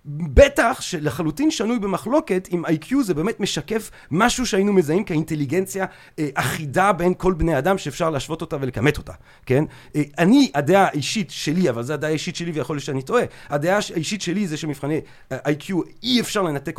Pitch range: 145-215 Hz